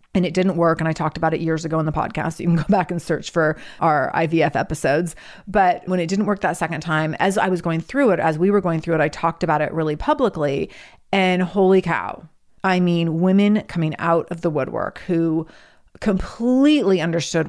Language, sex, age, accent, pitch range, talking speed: English, female, 30-49, American, 165-210 Hz, 220 wpm